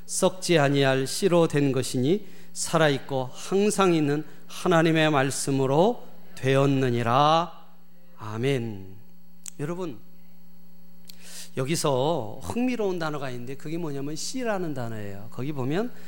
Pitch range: 145-200 Hz